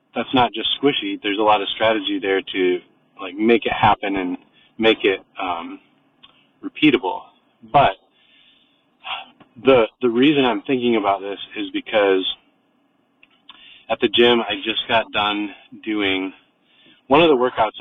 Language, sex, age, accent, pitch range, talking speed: English, male, 30-49, American, 105-140 Hz, 140 wpm